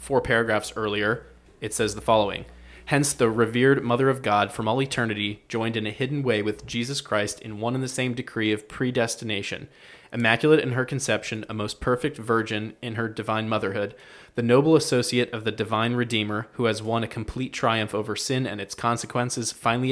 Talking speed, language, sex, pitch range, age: 190 wpm, English, male, 110-130 Hz, 20-39